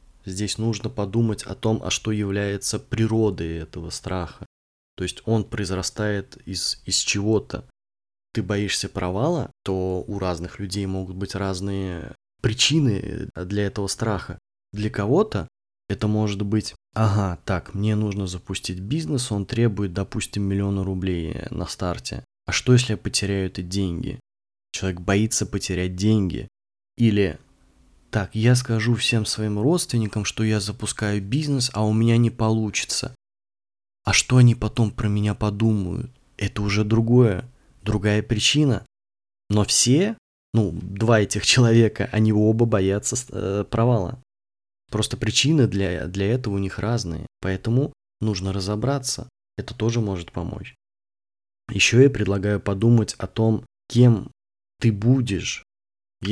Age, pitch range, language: 20-39, 95-115 Hz, Russian